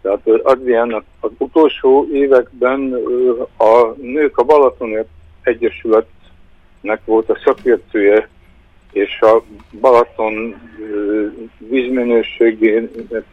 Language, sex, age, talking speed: Hungarian, male, 60-79, 70 wpm